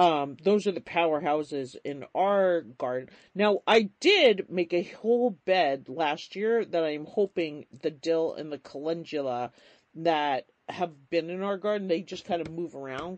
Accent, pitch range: American, 135-180 Hz